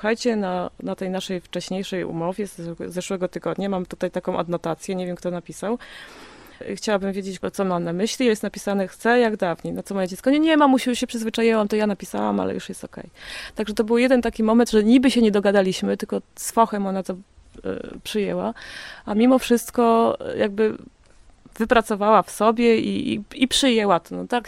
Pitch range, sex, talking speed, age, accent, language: 185-230 Hz, female, 195 wpm, 20-39, native, Polish